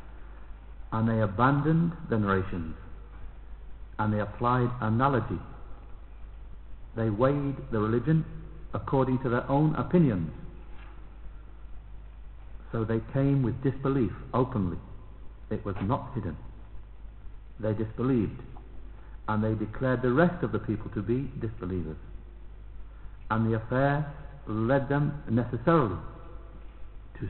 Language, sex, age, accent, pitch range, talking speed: English, male, 60-79, British, 100-140 Hz, 105 wpm